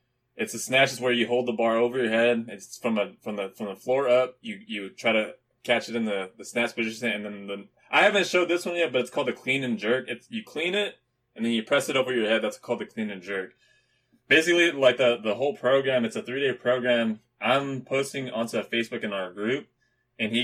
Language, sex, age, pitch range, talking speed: English, male, 20-39, 110-135 Hz, 255 wpm